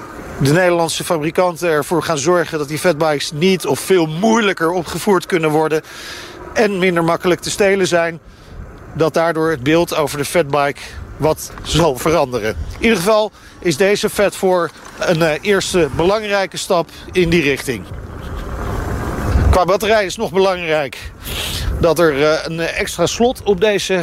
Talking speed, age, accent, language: 145 wpm, 50-69, Dutch, Dutch